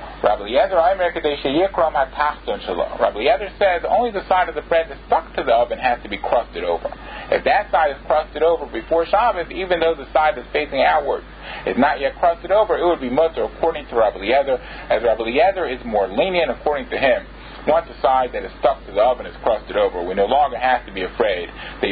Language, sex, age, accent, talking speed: English, male, 40-59, American, 210 wpm